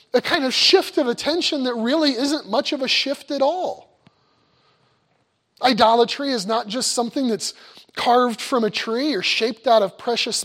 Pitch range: 210-265 Hz